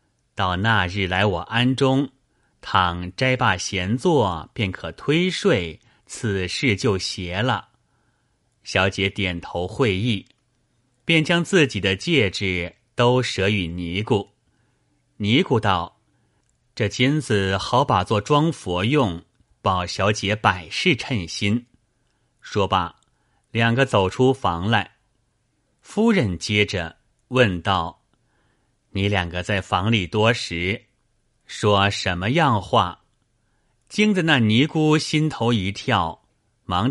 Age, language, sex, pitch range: 30-49, Chinese, male, 95-125 Hz